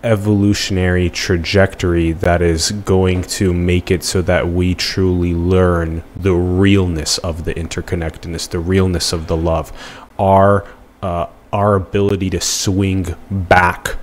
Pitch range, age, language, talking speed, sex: 85-100 Hz, 20-39, English, 130 wpm, male